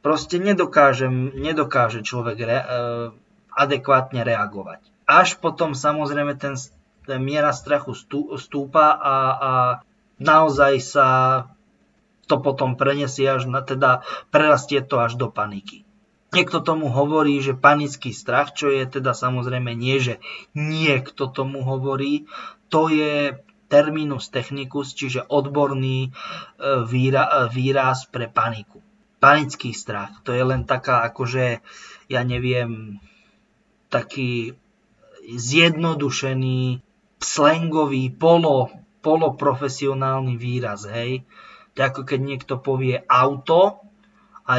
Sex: male